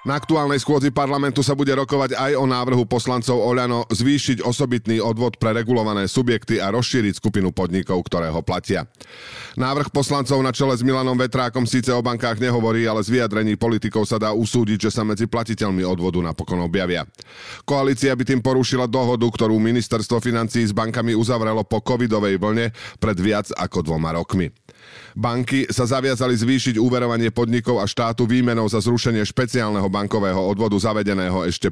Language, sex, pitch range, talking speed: Slovak, male, 100-125 Hz, 160 wpm